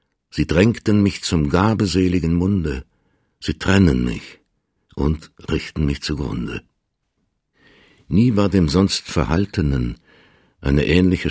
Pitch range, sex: 75-100 Hz, male